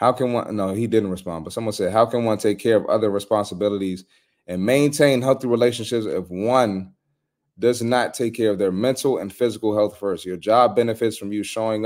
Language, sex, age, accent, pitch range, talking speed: English, male, 30-49, American, 100-135 Hz, 205 wpm